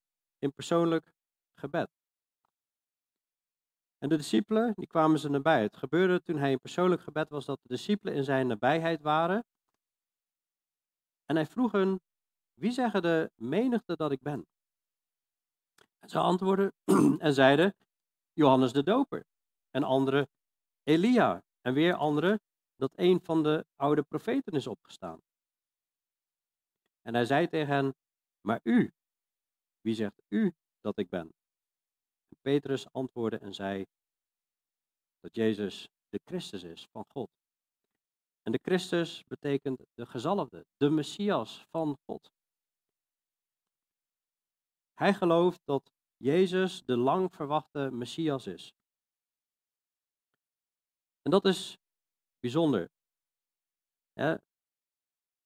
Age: 40-59